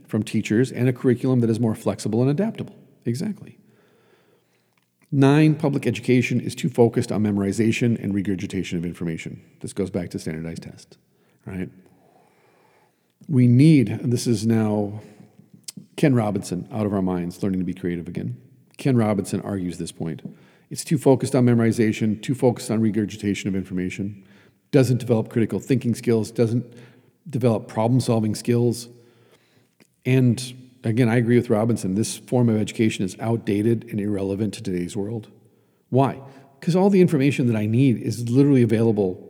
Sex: male